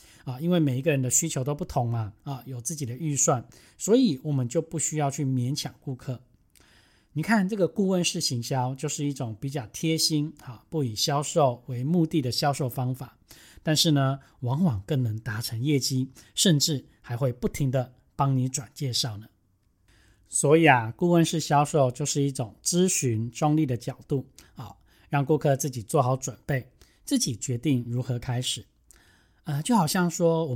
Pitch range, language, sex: 125-155 Hz, Chinese, male